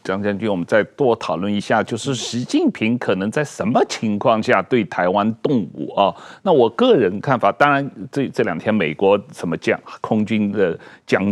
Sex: male